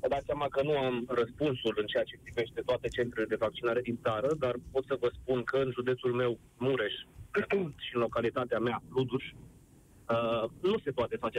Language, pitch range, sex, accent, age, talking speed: Romanian, 120-160 Hz, male, native, 30-49, 190 wpm